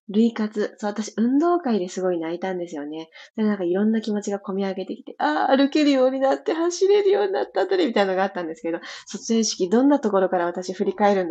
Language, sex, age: Japanese, female, 20-39